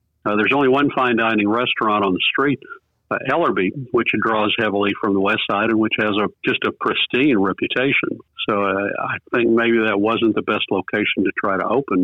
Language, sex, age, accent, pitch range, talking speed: English, male, 50-69, American, 105-115 Hz, 205 wpm